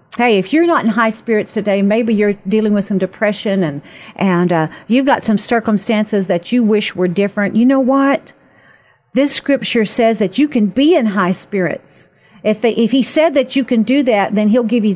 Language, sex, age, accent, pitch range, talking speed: English, female, 50-69, American, 195-240 Hz, 215 wpm